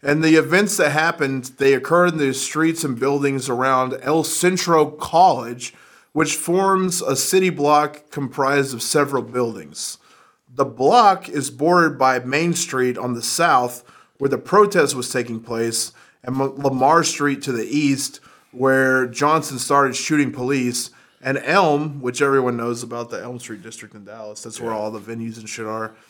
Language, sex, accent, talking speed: English, male, American, 165 wpm